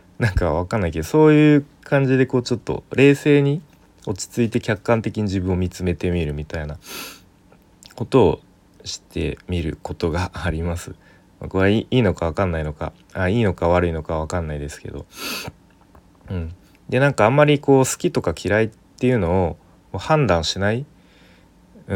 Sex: male